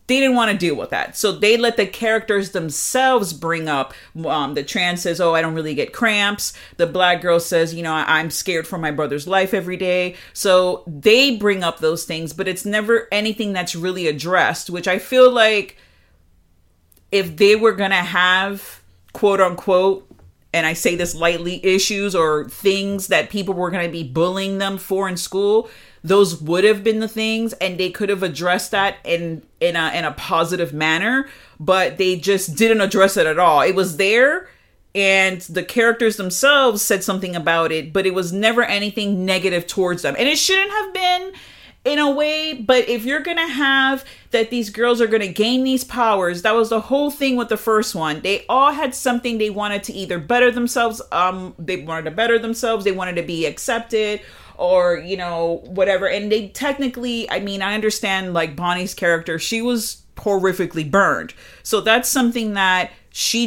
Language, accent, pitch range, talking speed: English, American, 175-230 Hz, 190 wpm